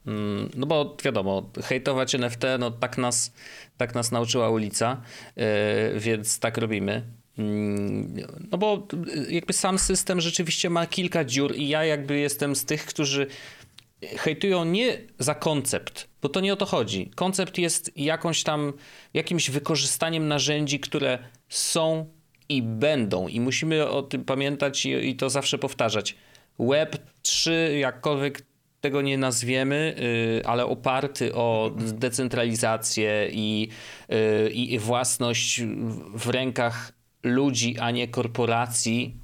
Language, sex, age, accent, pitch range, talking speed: Polish, male, 30-49, native, 115-145 Hz, 125 wpm